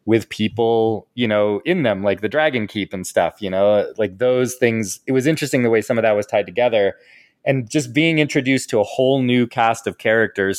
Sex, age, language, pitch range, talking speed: male, 20-39, English, 100-125 Hz, 220 wpm